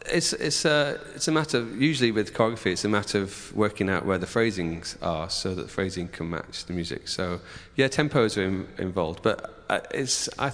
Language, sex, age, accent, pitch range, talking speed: English, male, 40-59, British, 90-120 Hz, 210 wpm